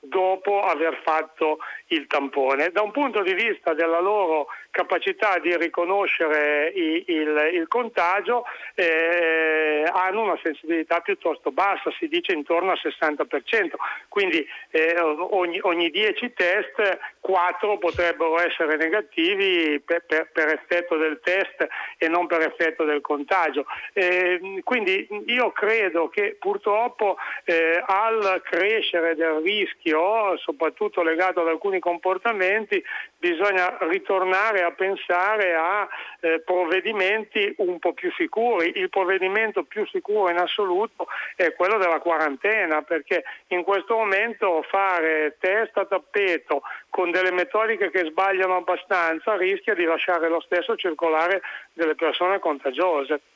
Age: 60-79